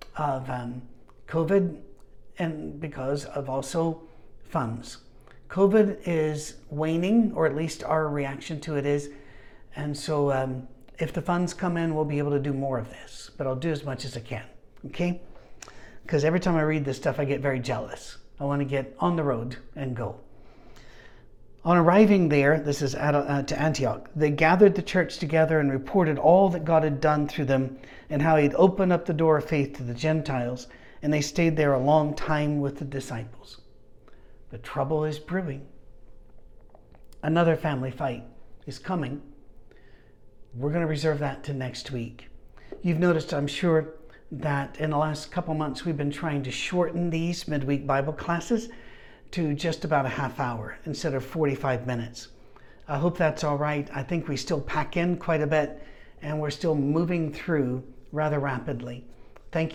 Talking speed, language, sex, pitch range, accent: 175 wpm, English, male, 135-160 Hz, American